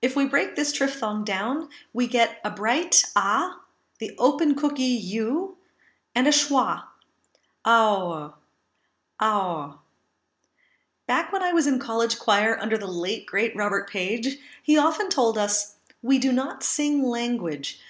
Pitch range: 215-280 Hz